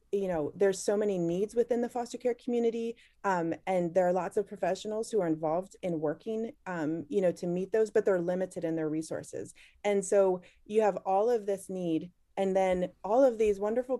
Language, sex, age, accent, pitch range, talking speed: English, female, 30-49, American, 170-210 Hz, 210 wpm